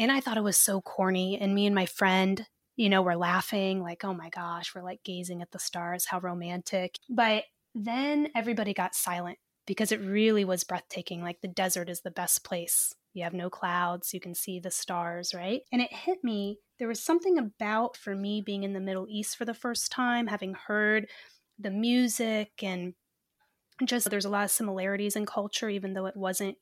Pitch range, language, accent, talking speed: 185-225 Hz, English, American, 205 wpm